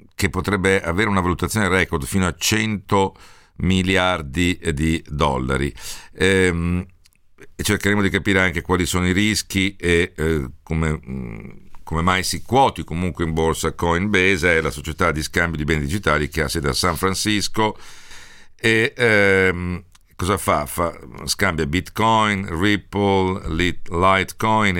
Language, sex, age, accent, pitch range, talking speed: Italian, male, 50-69, native, 80-100 Hz, 130 wpm